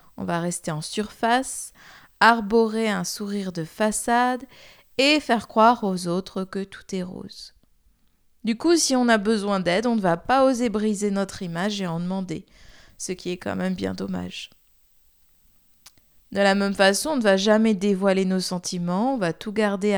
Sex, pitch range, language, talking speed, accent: female, 180-245 Hz, French, 175 wpm, French